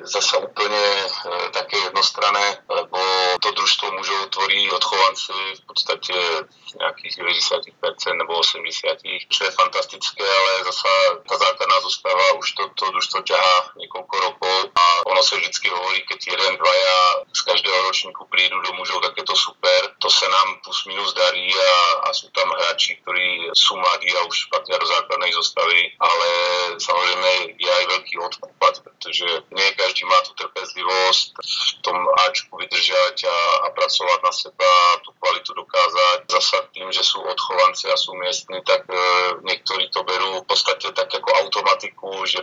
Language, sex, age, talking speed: Slovak, male, 30-49, 160 wpm